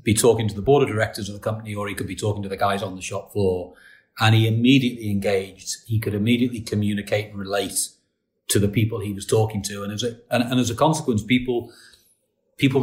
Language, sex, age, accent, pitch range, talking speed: English, male, 40-59, British, 100-115 Hz, 230 wpm